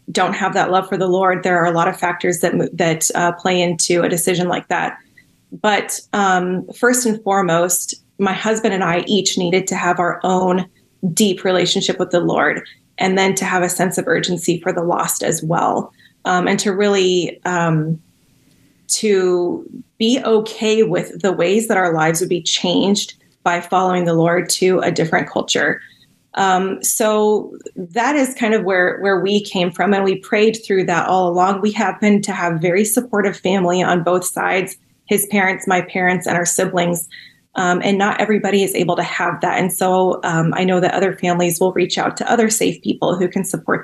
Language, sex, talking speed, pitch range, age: English, female, 195 wpm, 180-205 Hz, 20-39